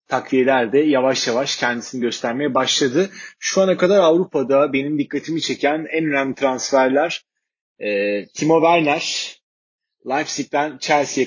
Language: Turkish